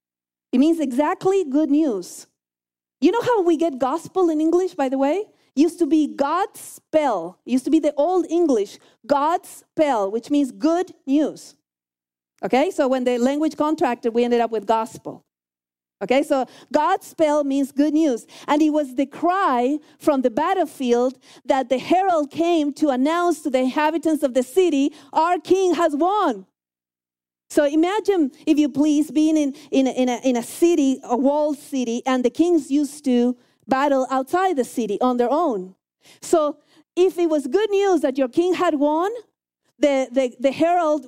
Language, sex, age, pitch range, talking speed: English, female, 40-59, 255-330 Hz, 175 wpm